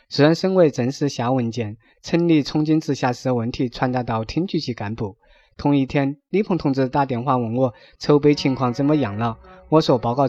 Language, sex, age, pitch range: Chinese, male, 20-39, 125-155 Hz